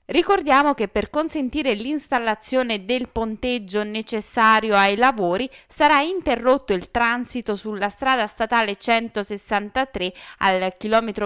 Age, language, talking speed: 20-39, Italian, 105 wpm